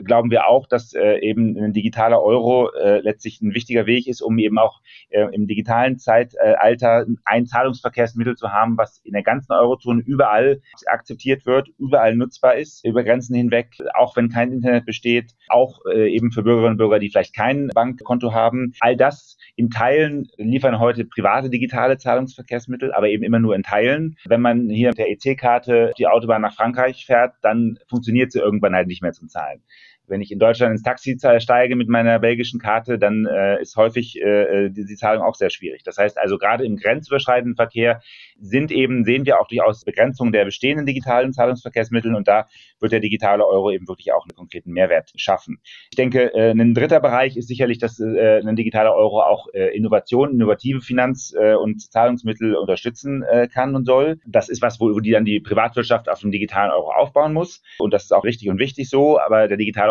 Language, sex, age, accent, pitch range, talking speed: German, male, 30-49, German, 110-125 Hz, 195 wpm